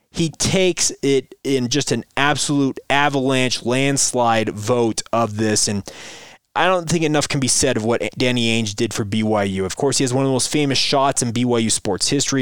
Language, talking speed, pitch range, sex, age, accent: English, 200 wpm, 115-140 Hz, male, 20-39, American